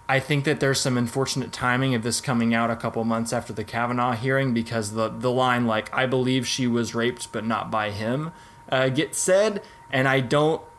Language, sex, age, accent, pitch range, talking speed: English, male, 20-39, American, 115-135 Hz, 210 wpm